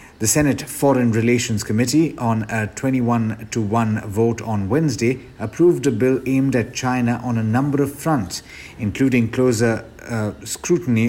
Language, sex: English, male